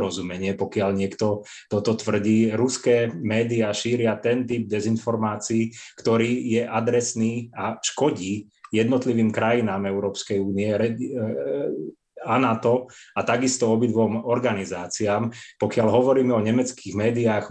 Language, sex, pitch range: Slovak, male, 105-115 Hz